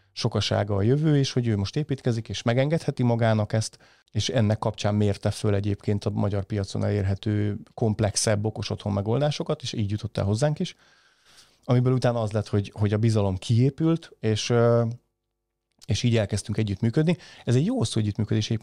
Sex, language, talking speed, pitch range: male, Hungarian, 165 wpm, 105-120 Hz